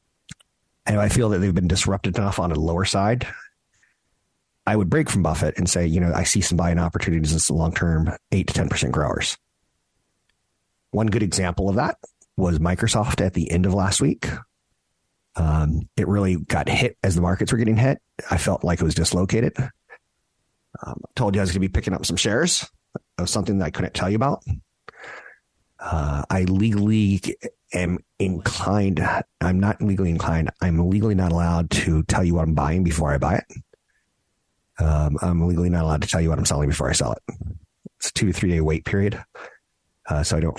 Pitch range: 85-105 Hz